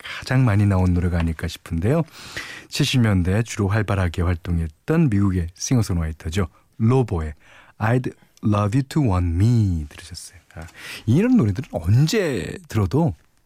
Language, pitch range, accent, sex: Korean, 90-130 Hz, native, male